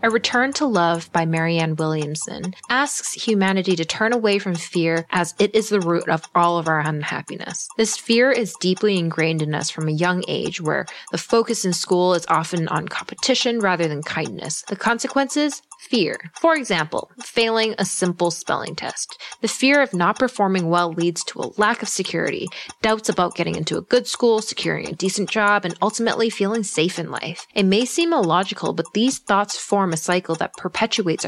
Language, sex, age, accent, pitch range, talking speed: English, female, 10-29, American, 165-220 Hz, 190 wpm